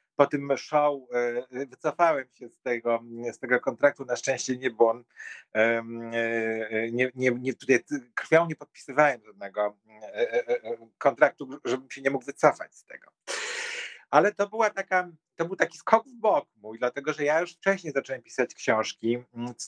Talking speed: 150 wpm